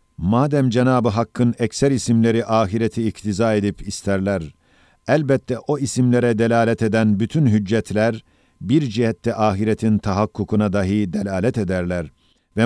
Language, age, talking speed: Turkish, 50-69, 115 wpm